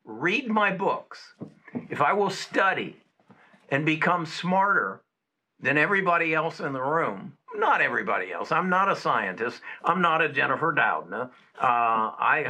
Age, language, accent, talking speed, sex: 60-79, English, American, 145 wpm, male